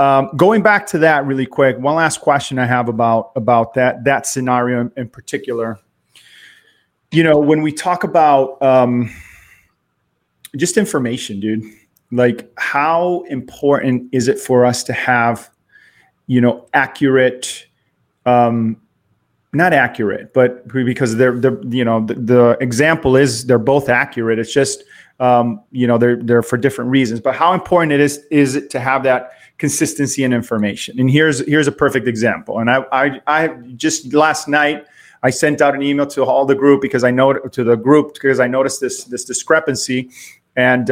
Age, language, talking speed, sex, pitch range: 30-49, English, 170 wpm, male, 120-145 Hz